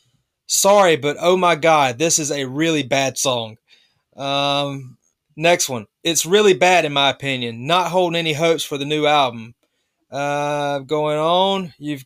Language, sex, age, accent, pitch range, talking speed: English, male, 20-39, American, 140-170 Hz, 160 wpm